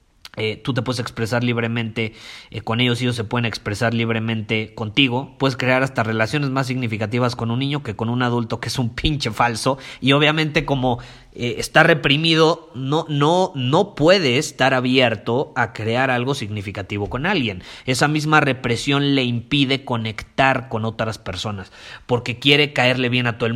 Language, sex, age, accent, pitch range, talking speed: Spanish, male, 30-49, Mexican, 115-145 Hz, 170 wpm